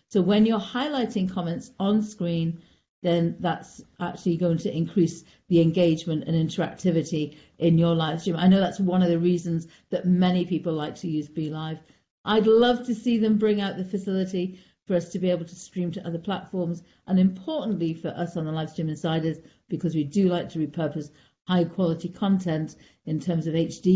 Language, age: English, 50-69